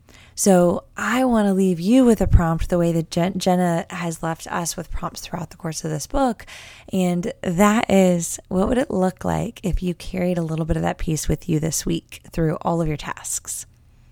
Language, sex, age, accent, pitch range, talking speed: English, female, 20-39, American, 155-190 Hz, 215 wpm